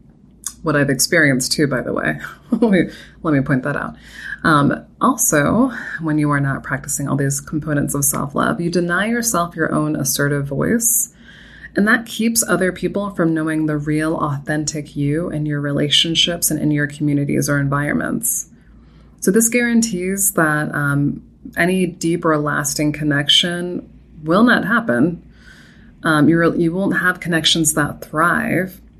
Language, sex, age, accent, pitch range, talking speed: English, female, 20-39, American, 145-175 Hz, 155 wpm